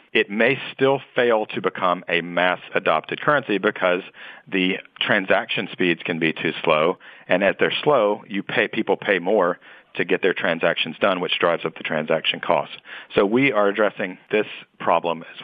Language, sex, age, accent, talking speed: English, male, 50-69, American, 165 wpm